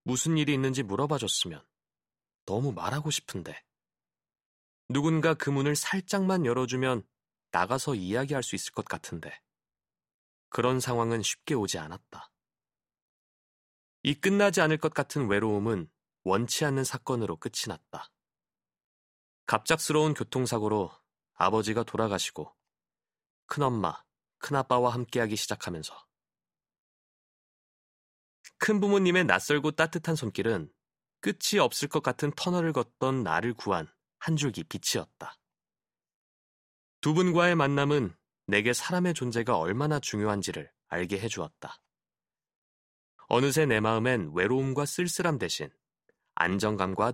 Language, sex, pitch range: Korean, male, 105-150 Hz